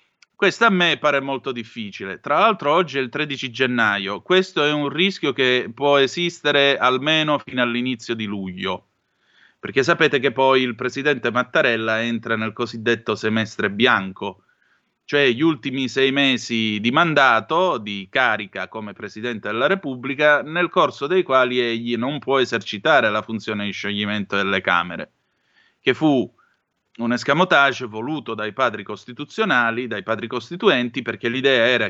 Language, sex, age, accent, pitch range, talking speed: Italian, male, 30-49, native, 110-140 Hz, 145 wpm